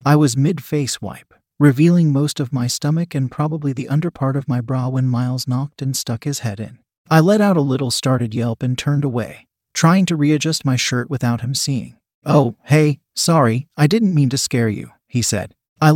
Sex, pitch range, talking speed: male, 120-150 Hz, 205 wpm